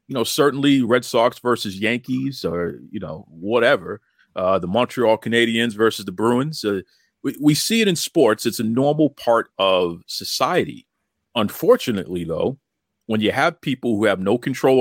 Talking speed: 165 wpm